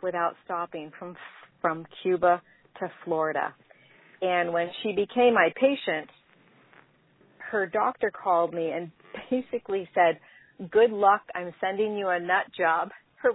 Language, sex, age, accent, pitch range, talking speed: English, female, 40-59, American, 155-180 Hz, 130 wpm